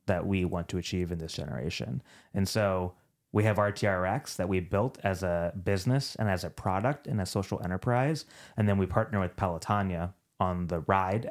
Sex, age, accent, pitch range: male, 30-49, American, 95-110 Hz